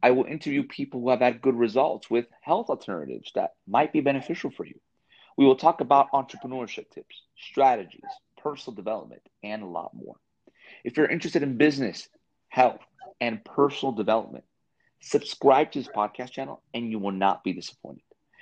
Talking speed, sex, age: 165 wpm, male, 40-59